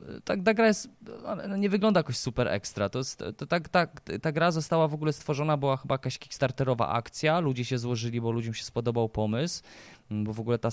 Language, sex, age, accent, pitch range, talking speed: Polish, male, 20-39, native, 105-160 Hz, 205 wpm